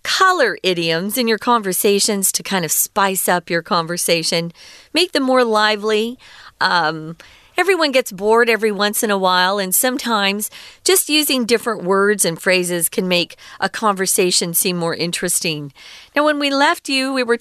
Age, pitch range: 40-59, 190-260 Hz